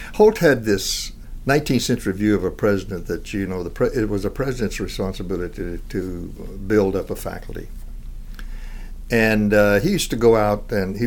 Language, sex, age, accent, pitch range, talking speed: English, male, 60-79, American, 90-110 Hz, 175 wpm